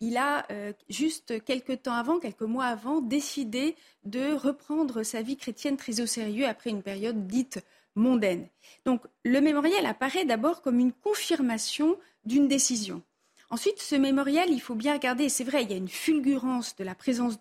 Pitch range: 230-285 Hz